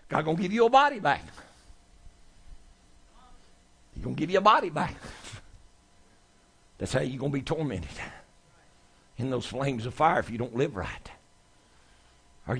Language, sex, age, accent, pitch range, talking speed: English, male, 60-79, American, 100-150 Hz, 160 wpm